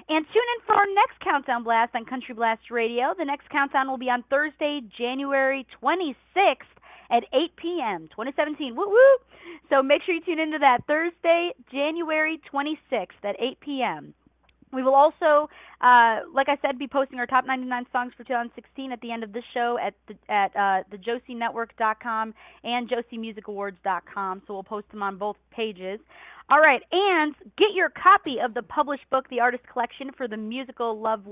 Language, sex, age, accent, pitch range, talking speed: English, female, 30-49, American, 225-285 Hz, 180 wpm